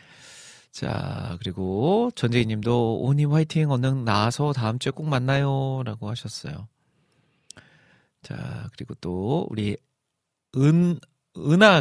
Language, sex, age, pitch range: Korean, male, 40-59, 110-150 Hz